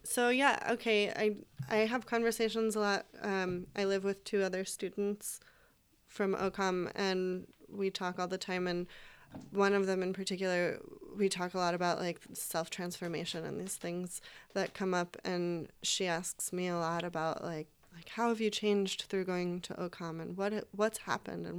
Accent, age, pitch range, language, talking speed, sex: American, 20-39, 180-205 Hz, English, 180 wpm, female